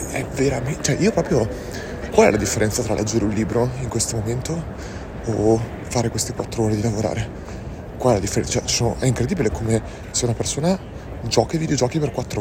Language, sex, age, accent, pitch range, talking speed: Italian, male, 30-49, native, 105-125 Hz, 195 wpm